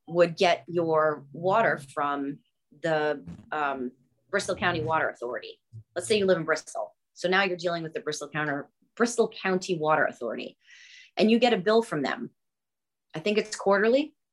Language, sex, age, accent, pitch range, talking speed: English, female, 30-49, American, 150-200 Hz, 170 wpm